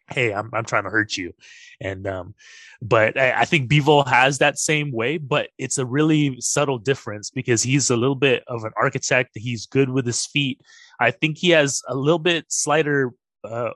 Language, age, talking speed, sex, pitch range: English, 20-39, 200 wpm, male, 115-150 Hz